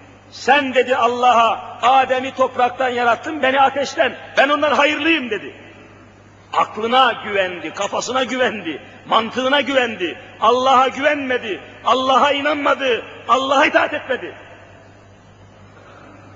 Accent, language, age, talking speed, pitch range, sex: native, Turkish, 50-69, 90 wpm, 200-245 Hz, male